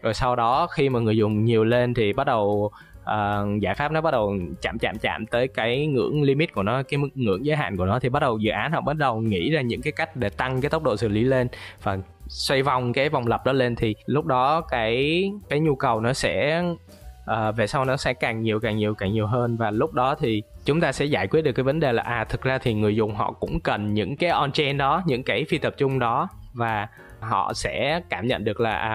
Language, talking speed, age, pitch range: Vietnamese, 260 wpm, 20-39, 110-140 Hz